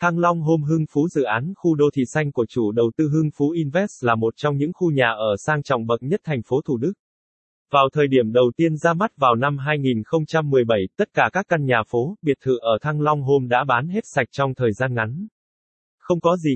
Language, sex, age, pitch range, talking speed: Vietnamese, male, 20-39, 120-155 Hz, 240 wpm